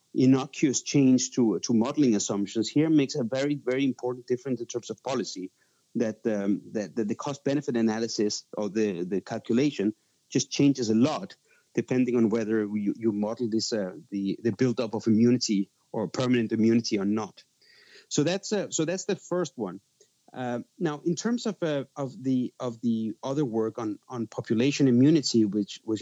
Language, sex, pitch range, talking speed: English, male, 110-135 Hz, 175 wpm